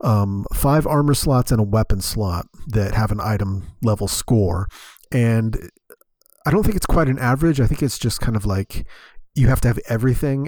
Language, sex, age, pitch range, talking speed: English, male, 30-49, 100-125 Hz, 195 wpm